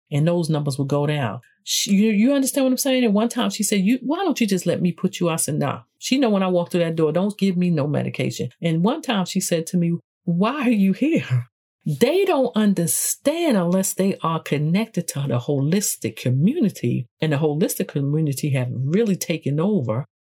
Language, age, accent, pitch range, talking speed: English, 50-69, American, 150-210 Hz, 215 wpm